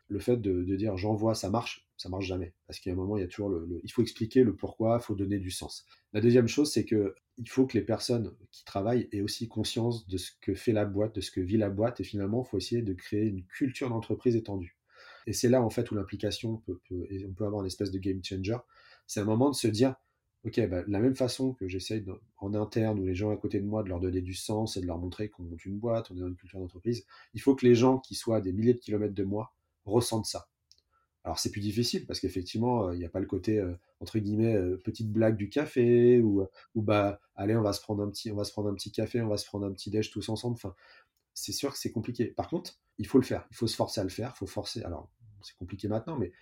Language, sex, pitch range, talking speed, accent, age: French, male, 95-115 Hz, 285 wpm, French, 30-49